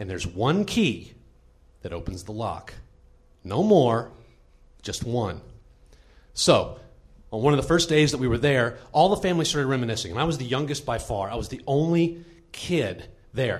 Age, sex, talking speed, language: 40-59, male, 180 wpm, English